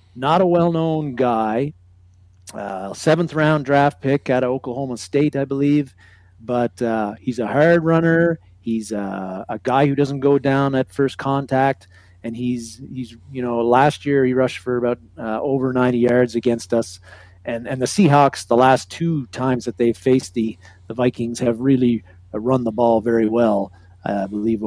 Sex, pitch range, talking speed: male, 110-140 Hz, 175 wpm